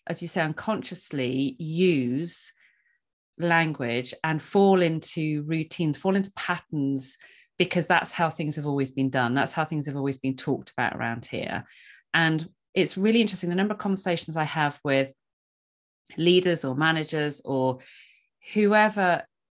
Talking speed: 145 wpm